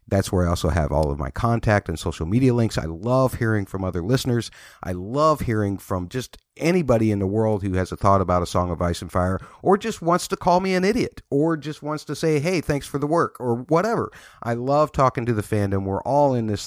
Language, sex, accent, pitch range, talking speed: English, male, American, 95-120 Hz, 250 wpm